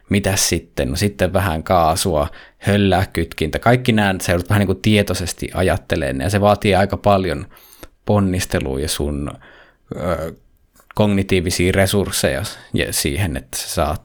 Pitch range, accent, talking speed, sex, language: 85-100 Hz, native, 130 wpm, male, Finnish